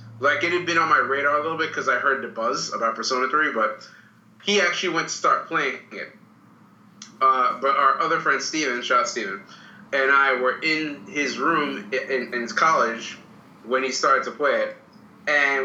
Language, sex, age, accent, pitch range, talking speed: English, male, 20-39, American, 130-175 Hz, 195 wpm